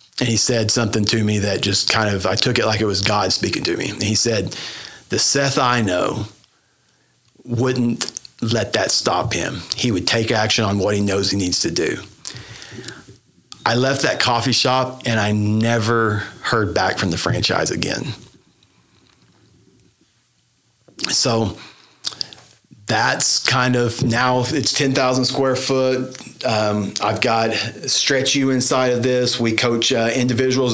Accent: American